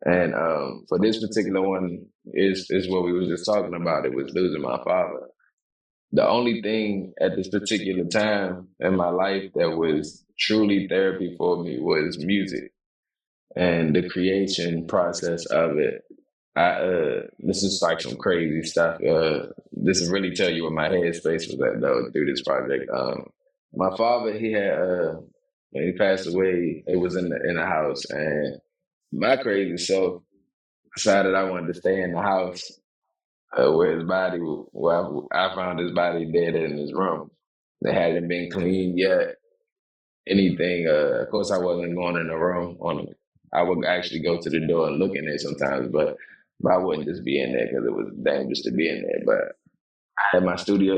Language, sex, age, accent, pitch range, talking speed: English, male, 20-39, American, 90-110 Hz, 185 wpm